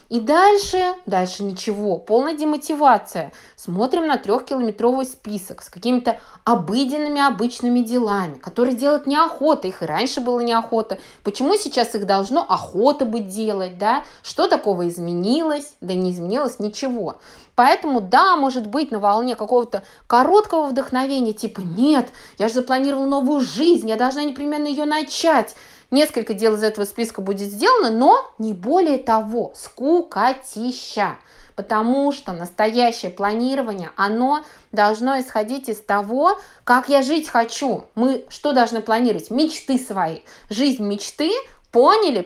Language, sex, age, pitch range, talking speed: Russian, female, 20-39, 215-280 Hz, 130 wpm